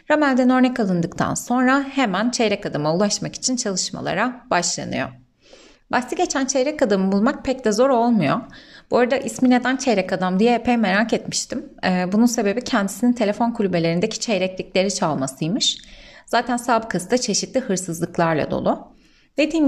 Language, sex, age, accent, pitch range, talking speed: Turkish, female, 30-49, native, 190-260 Hz, 135 wpm